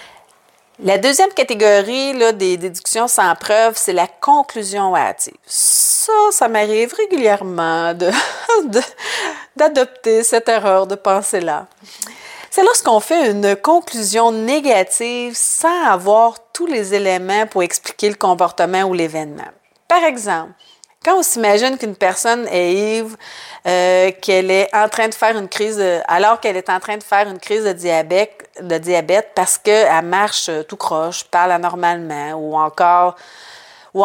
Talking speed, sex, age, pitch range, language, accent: 145 wpm, female, 40-59, 180-225 Hz, French, Canadian